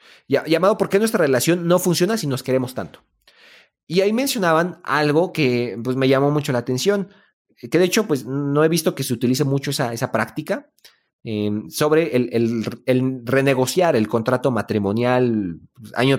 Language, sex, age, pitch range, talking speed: Spanish, male, 30-49, 115-155 Hz, 175 wpm